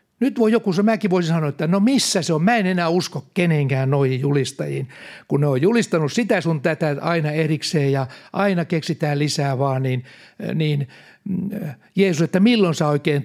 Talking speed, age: 180 wpm, 60-79